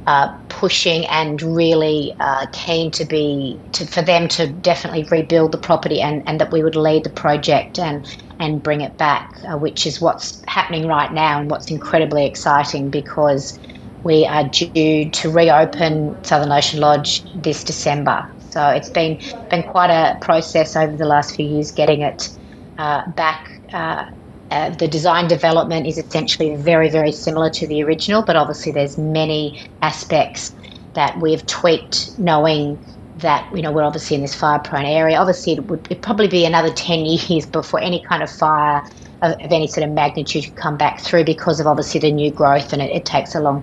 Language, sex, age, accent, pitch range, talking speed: English, female, 30-49, Australian, 145-165 Hz, 180 wpm